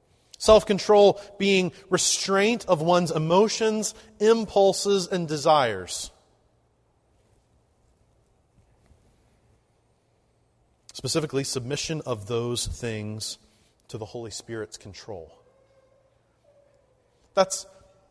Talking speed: 65 wpm